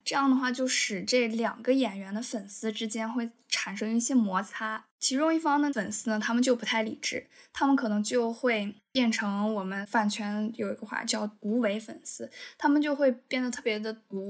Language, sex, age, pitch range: Chinese, female, 10-29, 210-240 Hz